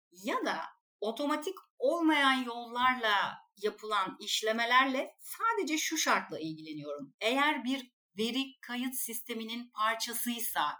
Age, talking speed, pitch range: 40-59, 95 wpm, 190-255 Hz